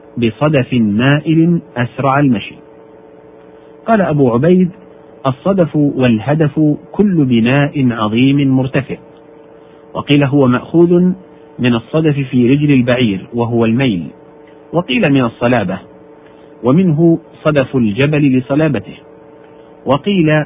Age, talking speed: 50-69, 90 wpm